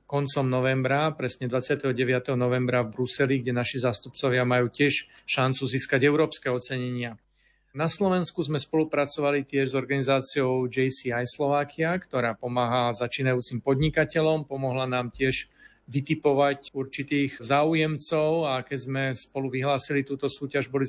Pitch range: 130-145 Hz